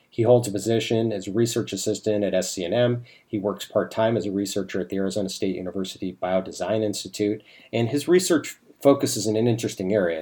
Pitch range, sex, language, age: 95-110 Hz, male, English, 40-59